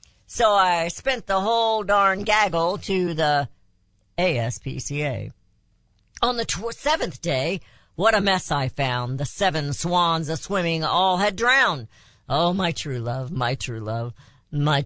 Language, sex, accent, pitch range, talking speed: English, female, American, 125-180 Hz, 135 wpm